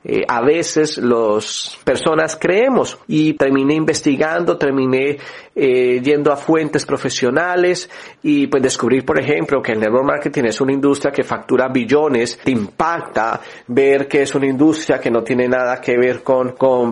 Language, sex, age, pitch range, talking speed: Spanish, male, 40-59, 120-150 Hz, 160 wpm